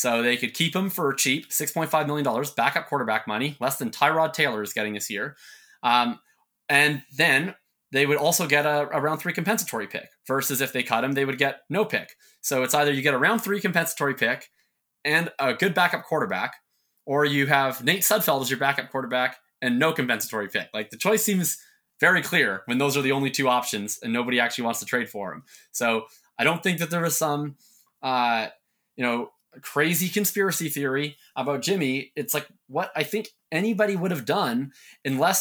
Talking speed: 205 wpm